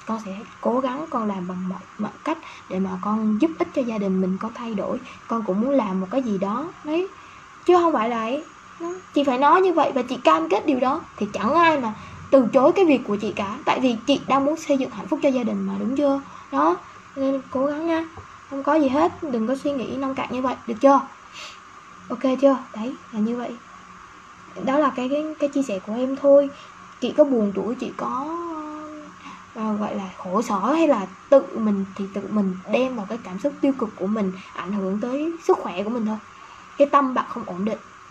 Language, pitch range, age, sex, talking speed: Vietnamese, 205-280 Hz, 10-29, female, 235 wpm